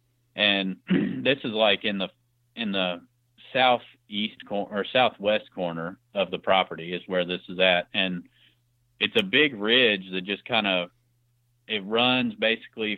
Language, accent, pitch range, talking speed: English, American, 95-120 Hz, 155 wpm